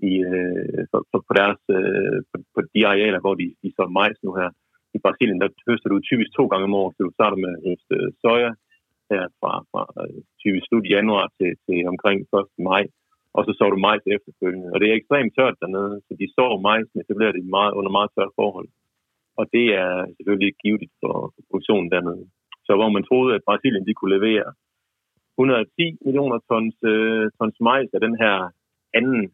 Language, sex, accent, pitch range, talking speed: Danish, male, native, 95-120 Hz, 195 wpm